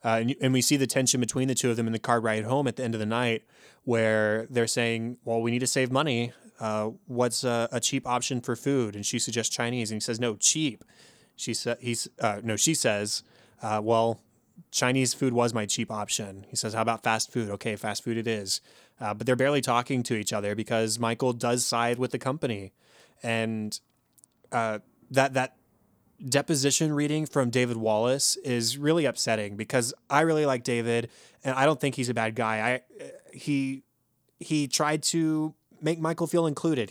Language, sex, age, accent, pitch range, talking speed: English, male, 20-39, American, 115-140 Hz, 200 wpm